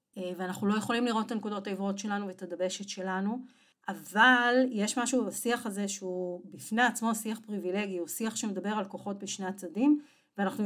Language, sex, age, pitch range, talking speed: Hebrew, female, 40-59, 195-250 Hz, 165 wpm